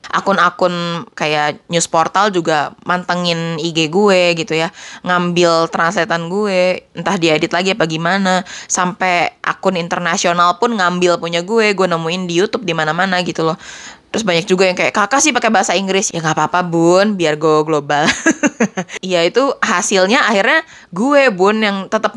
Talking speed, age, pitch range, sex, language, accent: 155 wpm, 20-39, 165-205 Hz, female, Indonesian, native